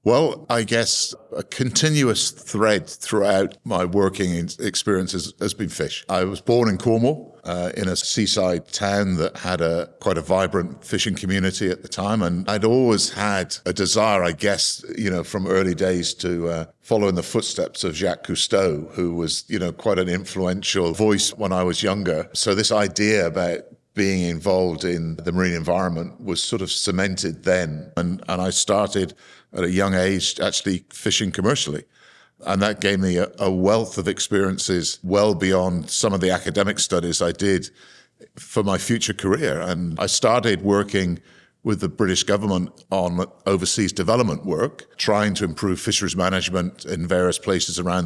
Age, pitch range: 50-69, 90-100 Hz